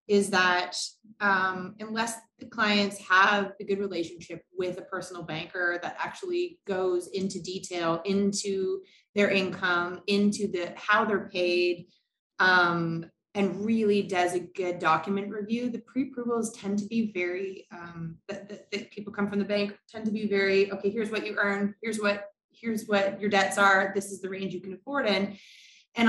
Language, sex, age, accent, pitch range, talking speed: English, female, 20-39, American, 175-205 Hz, 175 wpm